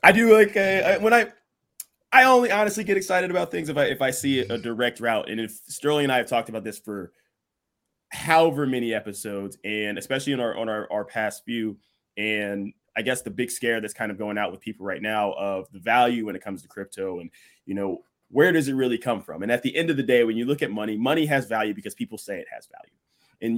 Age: 20-39